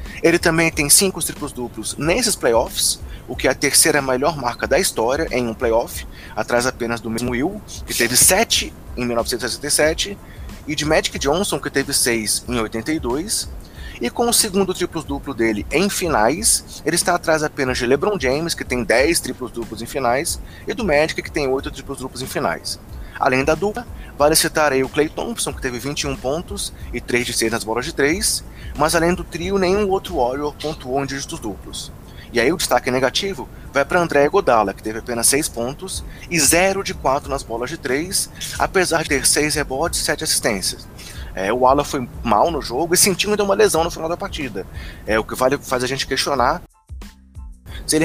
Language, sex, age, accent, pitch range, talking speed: Portuguese, male, 20-39, Brazilian, 120-160 Hz, 200 wpm